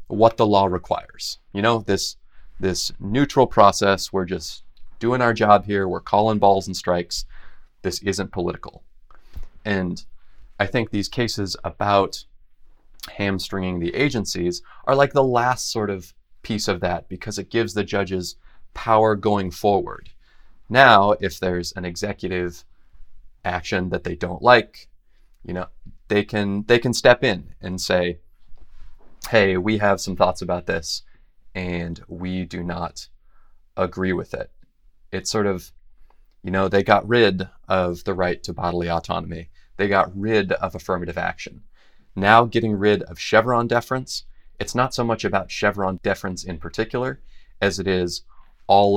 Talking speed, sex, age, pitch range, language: 150 wpm, male, 30-49, 90-105 Hz, English